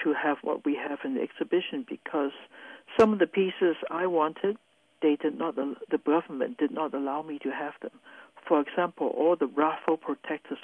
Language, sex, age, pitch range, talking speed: English, male, 60-79, 150-185 Hz, 190 wpm